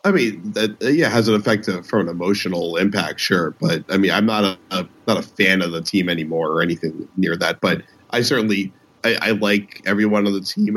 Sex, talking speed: male, 215 wpm